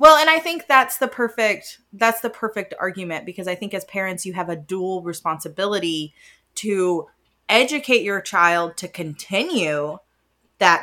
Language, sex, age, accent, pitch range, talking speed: English, female, 20-39, American, 155-195 Hz, 155 wpm